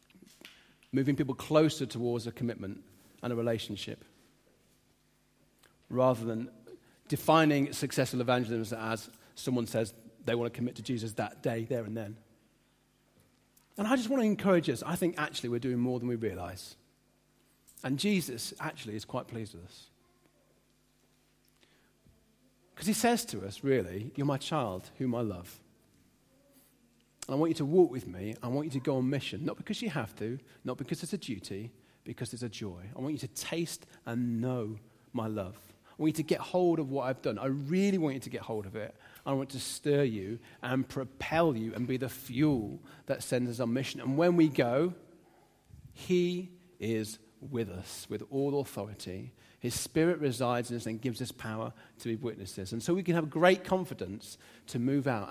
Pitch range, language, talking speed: 110-150 Hz, English, 185 wpm